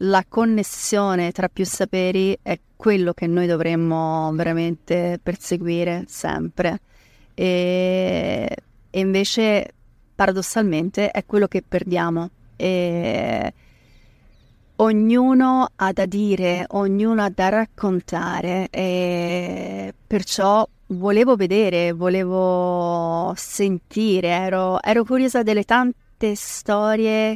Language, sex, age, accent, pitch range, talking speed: Italian, female, 30-49, native, 175-205 Hz, 90 wpm